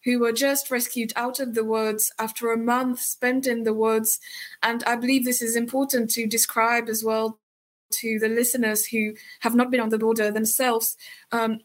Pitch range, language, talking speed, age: 215-250 Hz, Slovak, 190 wpm, 20-39